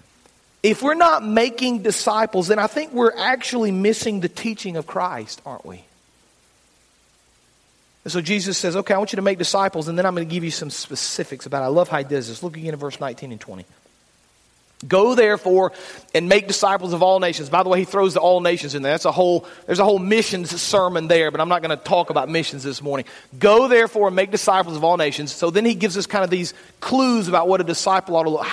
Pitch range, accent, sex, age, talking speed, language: 165-220 Hz, American, male, 40-59, 240 wpm, English